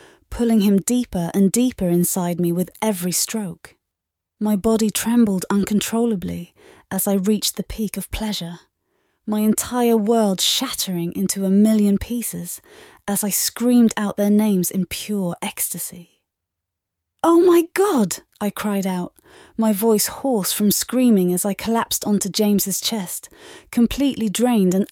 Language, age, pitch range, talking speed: English, 30-49, 175-230 Hz, 140 wpm